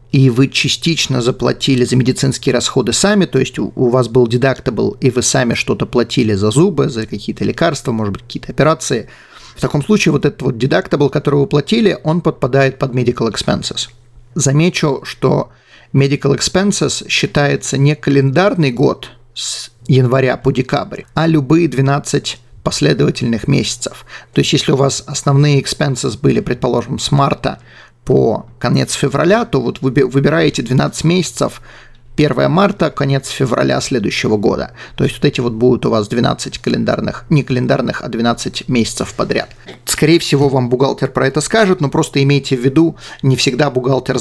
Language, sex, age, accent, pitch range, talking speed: Russian, male, 40-59, native, 125-150 Hz, 155 wpm